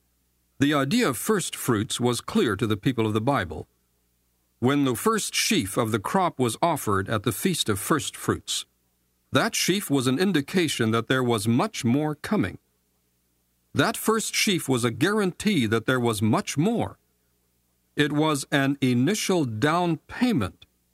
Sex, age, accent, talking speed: male, 50-69, American, 160 wpm